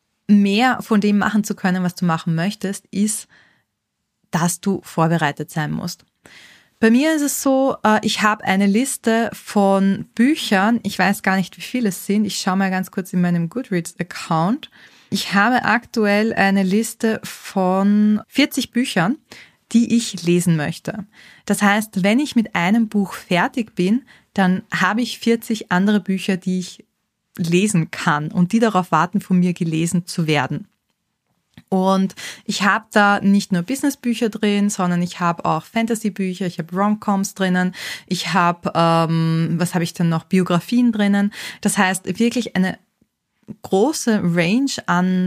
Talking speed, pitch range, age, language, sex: 155 wpm, 180-220 Hz, 20-39, German, female